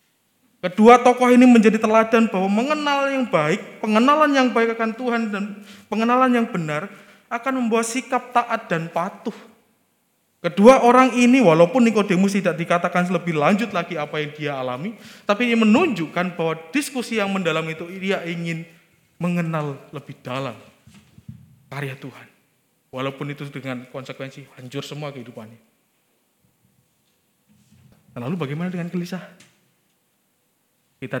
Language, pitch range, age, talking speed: Indonesian, 135-210 Hz, 20-39, 125 wpm